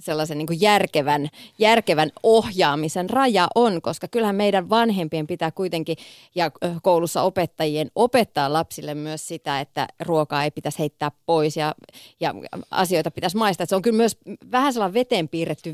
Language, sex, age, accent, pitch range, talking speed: Finnish, female, 30-49, native, 155-180 Hz, 150 wpm